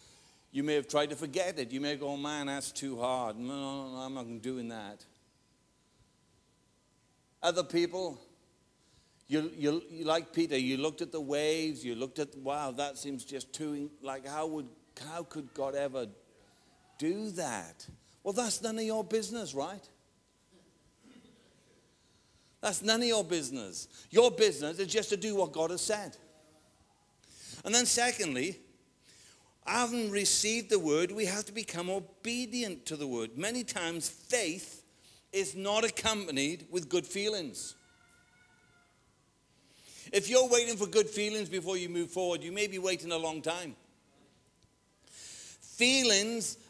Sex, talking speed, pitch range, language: male, 145 wpm, 145-210 Hz, English